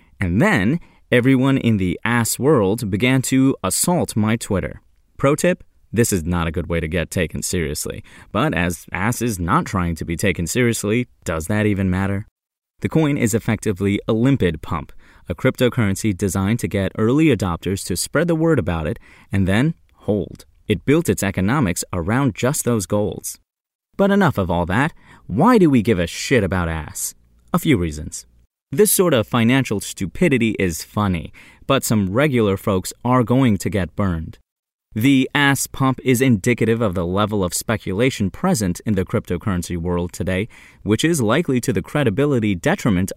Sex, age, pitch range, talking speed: male, 30-49, 90-125 Hz, 170 wpm